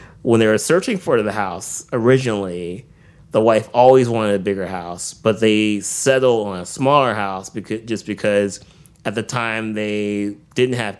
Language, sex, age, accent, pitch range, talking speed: English, male, 30-49, American, 95-115 Hz, 170 wpm